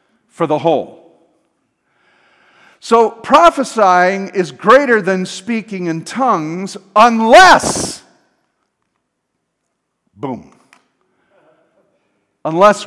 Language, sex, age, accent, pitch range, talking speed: English, male, 50-69, American, 155-225 Hz, 65 wpm